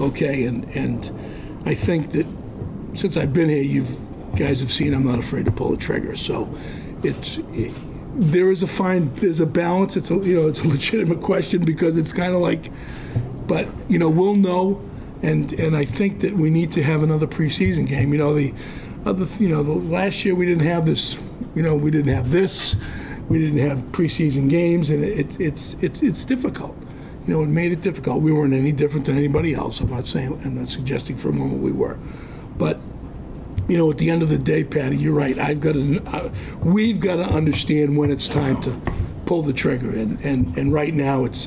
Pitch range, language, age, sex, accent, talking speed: 140-170 Hz, English, 50-69, male, American, 220 wpm